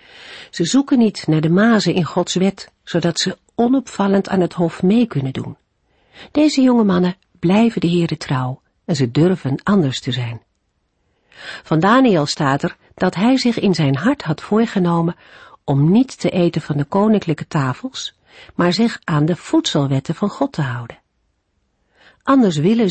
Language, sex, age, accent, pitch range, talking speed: Dutch, female, 50-69, Dutch, 145-210 Hz, 160 wpm